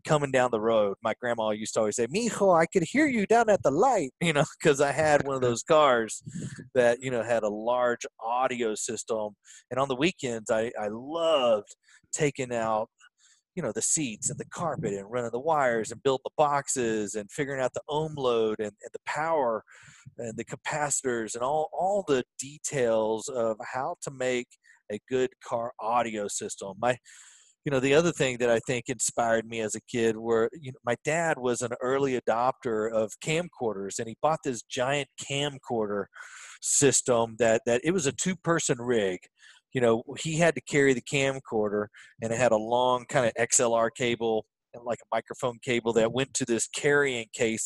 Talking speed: 195 wpm